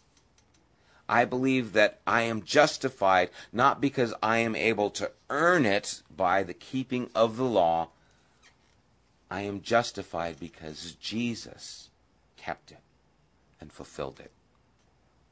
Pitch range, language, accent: 80-115 Hz, English, American